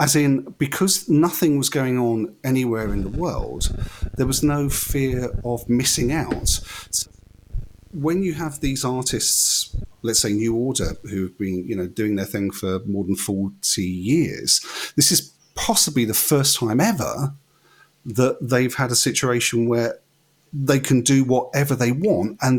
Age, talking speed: 40-59, 160 wpm